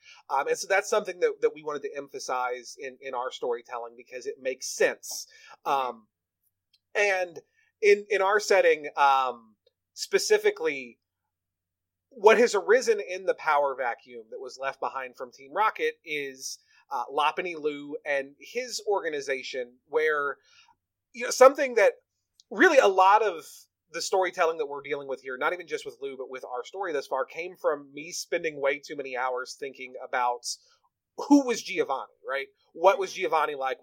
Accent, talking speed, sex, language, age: American, 165 wpm, male, English, 30-49